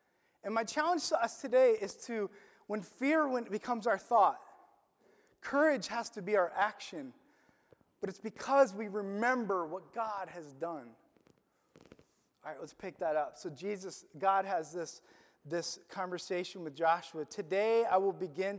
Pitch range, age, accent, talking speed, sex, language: 195-295 Hz, 30-49, American, 150 wpm, male, English